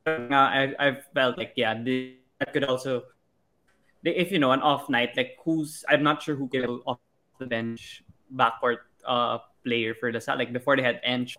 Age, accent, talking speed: 20-39, native, 190 wpm